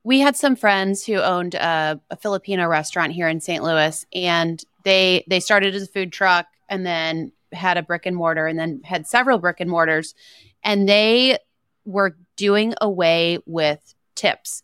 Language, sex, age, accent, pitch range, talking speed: English, female, 30-49, American, 170-205 Hz, 175 wpm